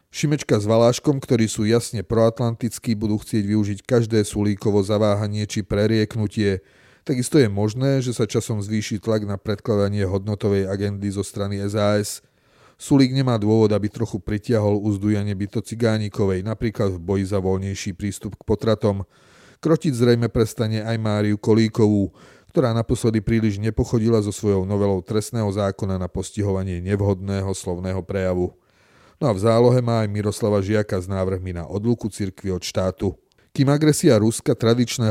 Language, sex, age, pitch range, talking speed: Slovak, male, 30-49, 100-115 Hz, 145 wpm